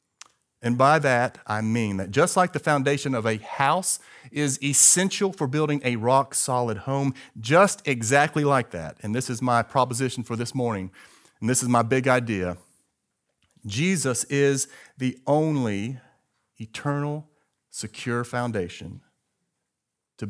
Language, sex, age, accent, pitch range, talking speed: English, male, 40-59, American, 110-140 Hz, 135 wpm